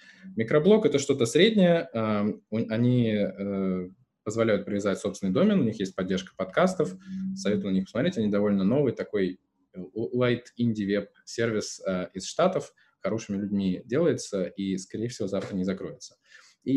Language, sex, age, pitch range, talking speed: Russian, male, 20-39, 95-115 Hz, 135 wpm